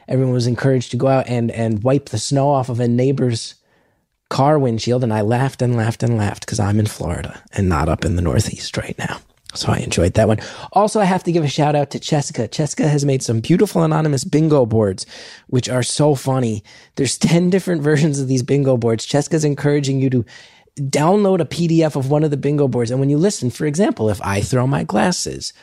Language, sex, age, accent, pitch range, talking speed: English, male, 30-49, American, 115-150 Hz, 220 wpm